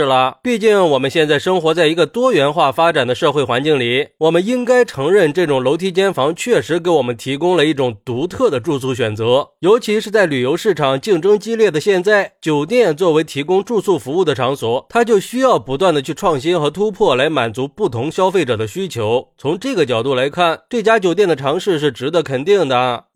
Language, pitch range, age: Chinese, 135-215 Hz, 20-39